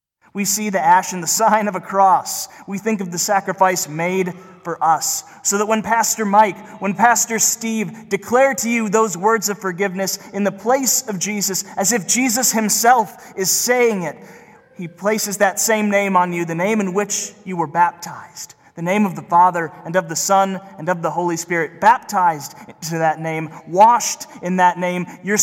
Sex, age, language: male, 30-49, English